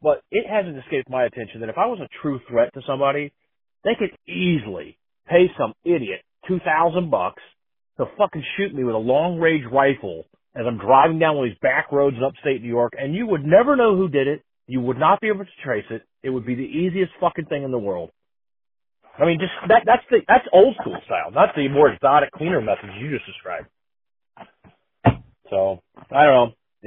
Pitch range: 125-175 Hz